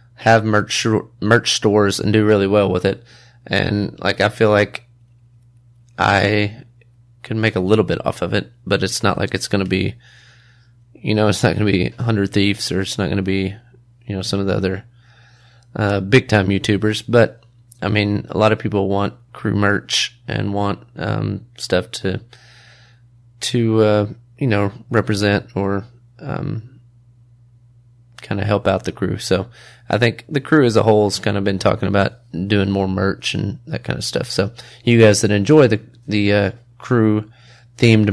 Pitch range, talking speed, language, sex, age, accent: 100-120 Hz, 185 wpm, English, male, 30-49, American